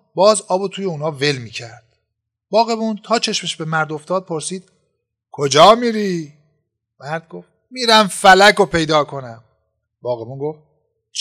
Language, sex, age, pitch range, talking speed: Persian, male, 50-69, 140-205 Hz, 135 wpm